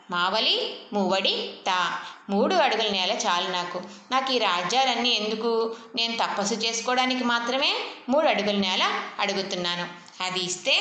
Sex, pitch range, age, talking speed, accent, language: female, 185-240 Hz, 20-39, 115 wpm, native, Telugu